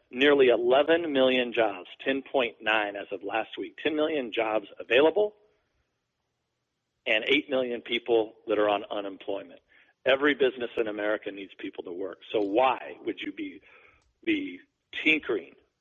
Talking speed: 135 wpm